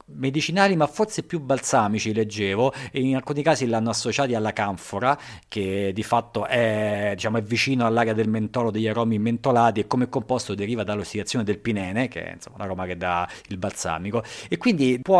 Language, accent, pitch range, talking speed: Italian, native, 105-140 Hz, 180 wpm